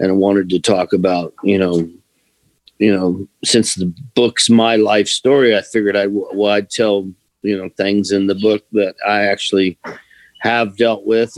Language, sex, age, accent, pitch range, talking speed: English, male, 40-59, American, 95-115 Hz, 175 wpm